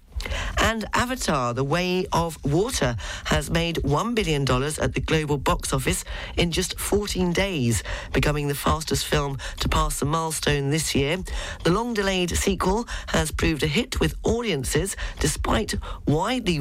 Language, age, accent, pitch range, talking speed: English, 40-59, British, 130-180 Hz, 150 wpm